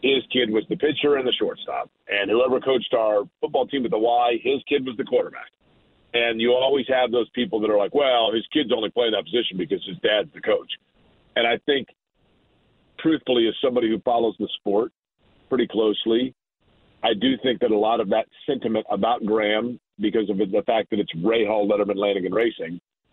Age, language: 50-69, English